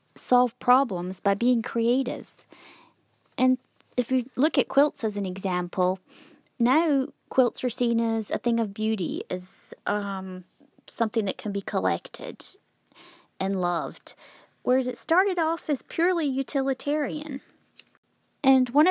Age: 30-49